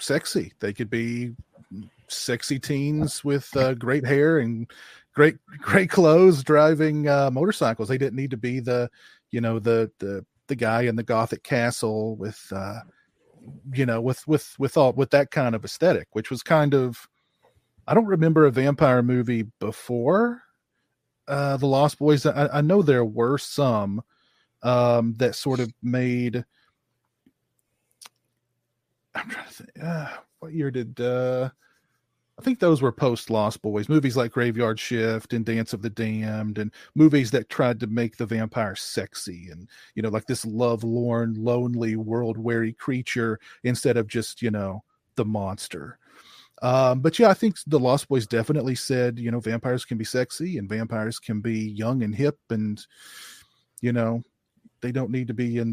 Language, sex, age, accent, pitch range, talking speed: English, male, 40-59, American, 115-140 Hz, 165 wpm